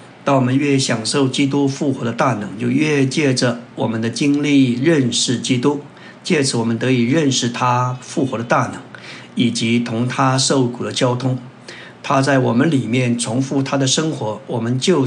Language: Chinese